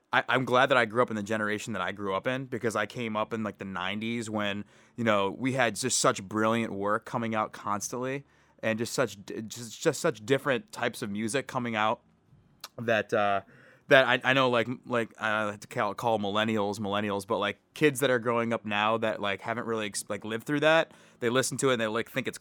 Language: English